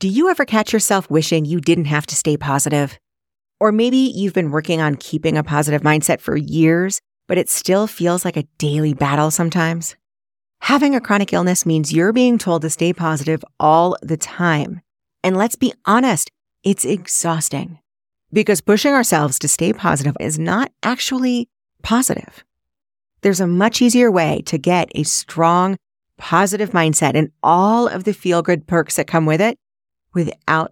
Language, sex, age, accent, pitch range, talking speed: English, female, 30-49, American, 155-200 Hz, 165 wpm